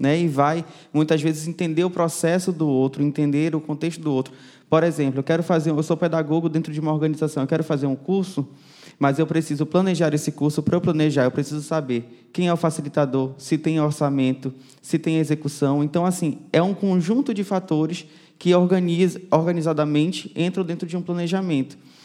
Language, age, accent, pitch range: Portuguese, 20-39, Brazilian, 150-185 Hz